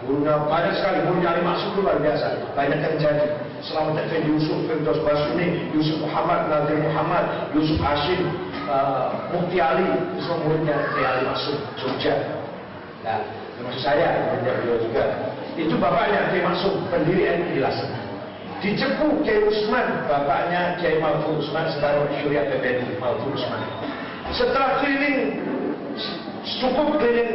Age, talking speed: 50-69, 125 wpm